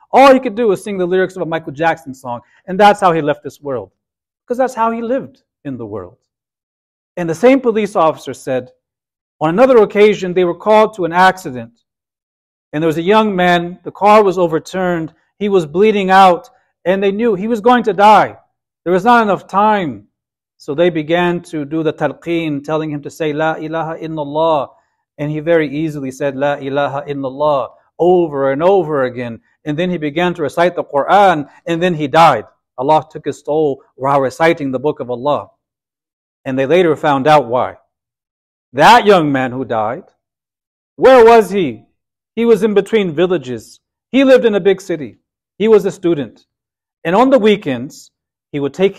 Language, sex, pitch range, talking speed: English, male, 145-195 Hz, 190 wpm